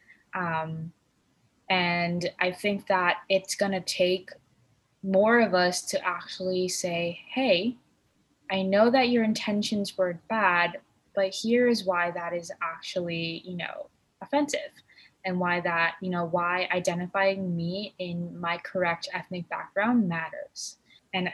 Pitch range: 175-200 Hz